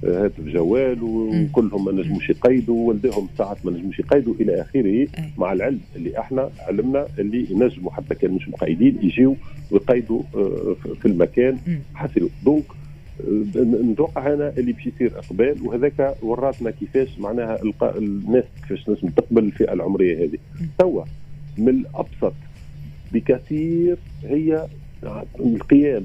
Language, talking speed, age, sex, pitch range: Arabic, 120 wpm, 50-69, male, 115-160 Hz